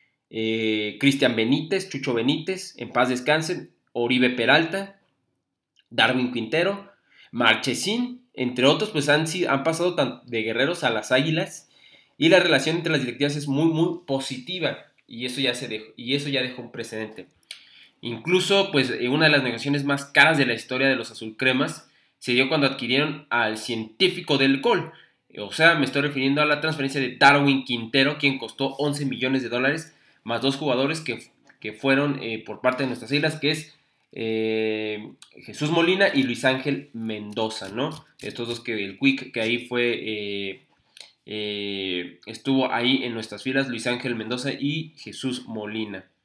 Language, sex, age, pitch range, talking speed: Spanish, male, 20-39, 115-145 Hz, 165 wpm